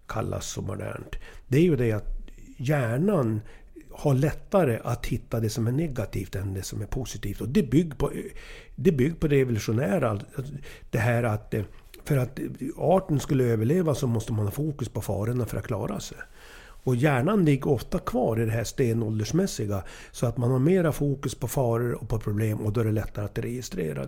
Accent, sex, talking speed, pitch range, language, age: Swedish, male, 185 wpm, 115-155 Hz, English, 60-79